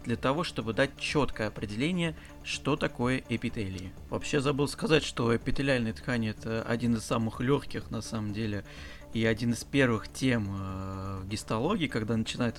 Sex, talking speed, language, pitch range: male, 155 wpm, Russian, 105-130 Hz